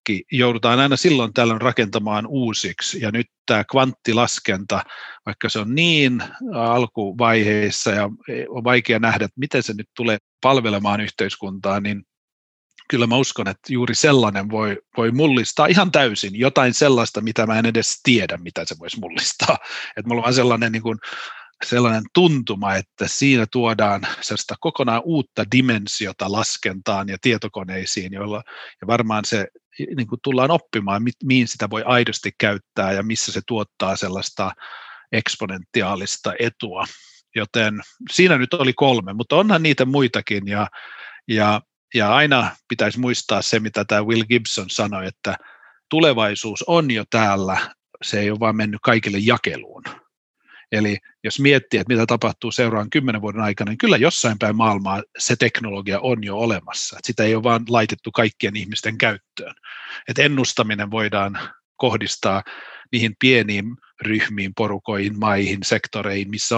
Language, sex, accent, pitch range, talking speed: Finnish, male, native, 105-125 Hz, 145 wpm